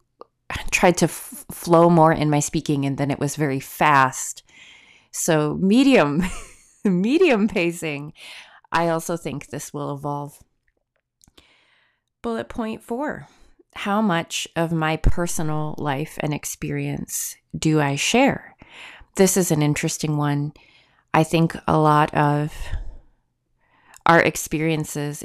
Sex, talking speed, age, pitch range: female, 120 wpm, 30-49, 150-200 Hz